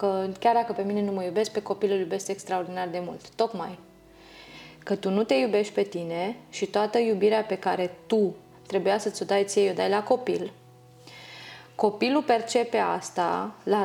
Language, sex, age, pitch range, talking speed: Romanian, female, 20-39, 190-215 Hz, 180 wpm